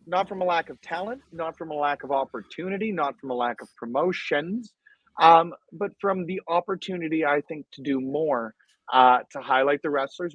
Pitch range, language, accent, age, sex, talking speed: 130-165 Hz, English, American, 30-49, male, 190 wpm